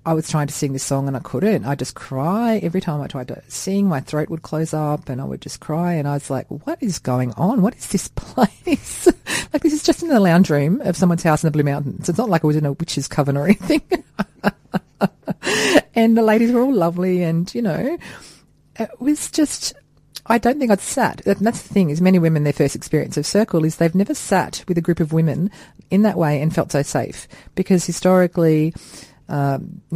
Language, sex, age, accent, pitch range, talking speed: English, female, 40-59, Australian, 145-185 Hz, 235 wpm